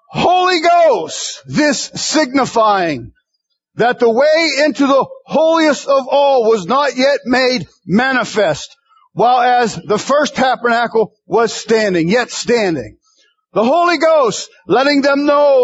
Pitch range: 225-310 Hz